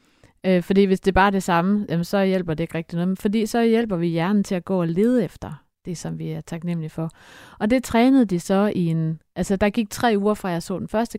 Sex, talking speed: female, 255 wpm